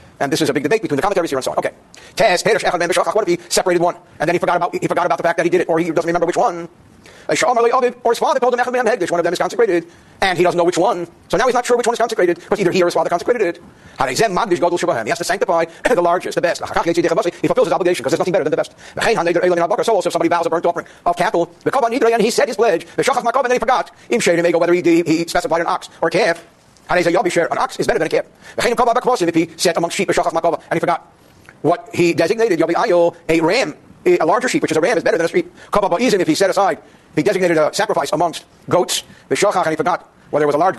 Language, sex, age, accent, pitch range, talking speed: English, male, 50-69, American, 170-225 Hz, 250 wpm